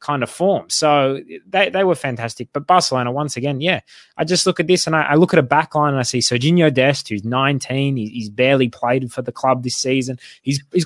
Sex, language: male, English